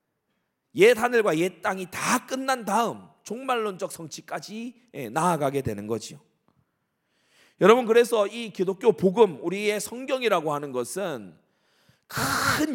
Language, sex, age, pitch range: Korean, male, 30-49, 135-210 Hz